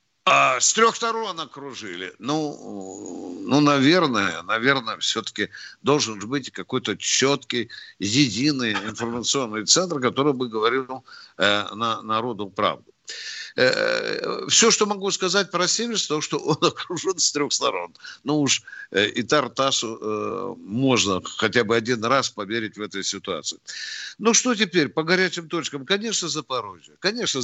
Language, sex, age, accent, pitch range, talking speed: Russian, male, 60-79, native, 130-190 Hz, 135 wpm